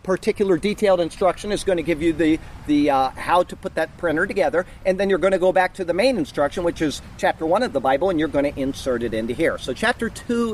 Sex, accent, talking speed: male, American, 260 wpm